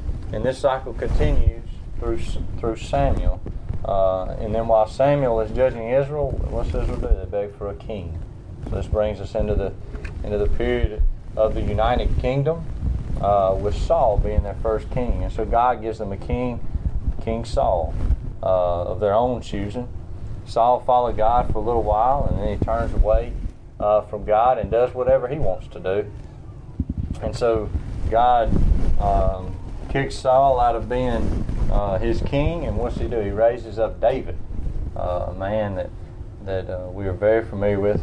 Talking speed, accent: 175 wpm, American